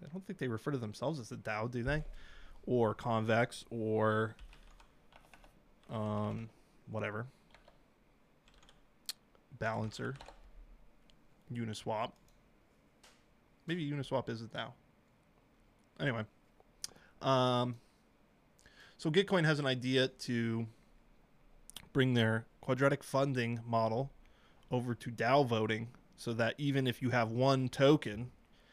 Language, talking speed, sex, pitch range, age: English, 100 wpm, male, 115-135 Hz, 20-39